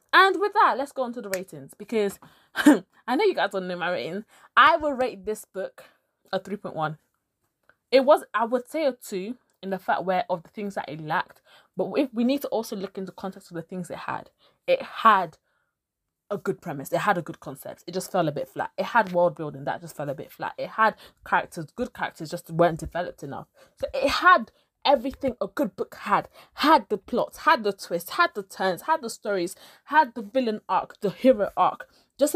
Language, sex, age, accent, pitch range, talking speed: English, female, 20-39, British, 190-275 Hz, 220 wpm